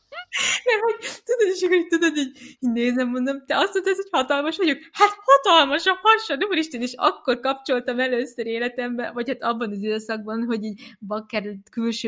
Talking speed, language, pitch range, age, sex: 175 wpm, Hungarian, 185-250 Hz, 20-39, female